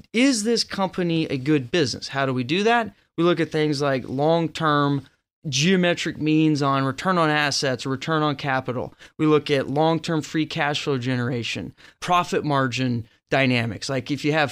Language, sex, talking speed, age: English, male, 170 wpm, 20-39